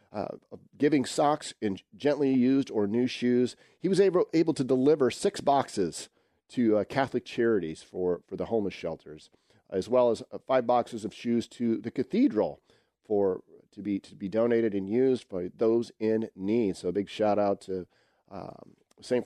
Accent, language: American, English